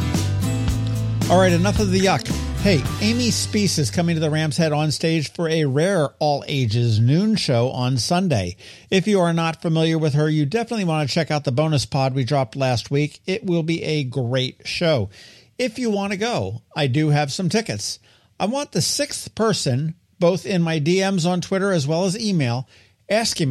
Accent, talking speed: American, 200 wpm